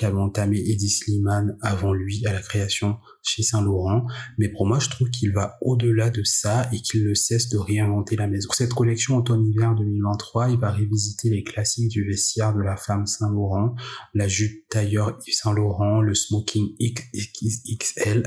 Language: French